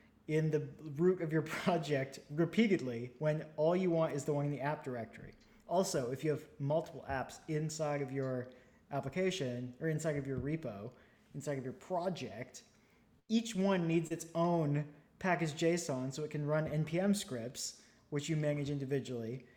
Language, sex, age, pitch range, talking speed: English, male, 20-39, 140-165 Hz, 165 wpm